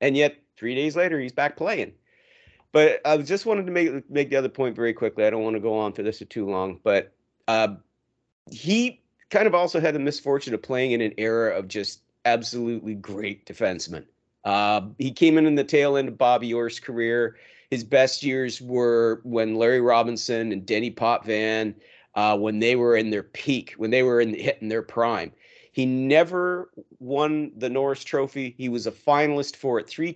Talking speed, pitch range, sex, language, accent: 195 wpm, 115-145 Hz, male, English, American